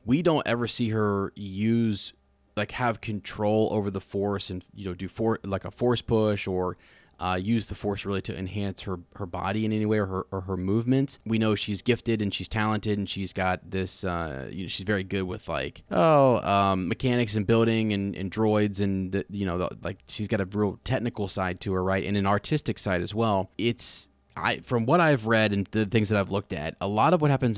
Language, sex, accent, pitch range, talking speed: English, male, American, 95-115 Hz, 220 wpm